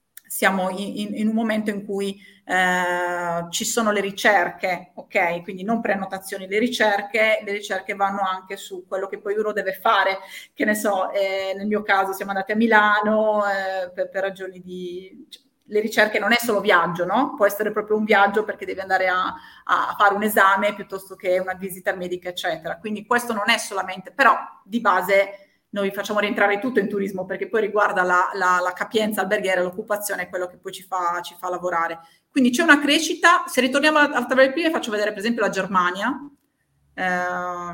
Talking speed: 185 wpm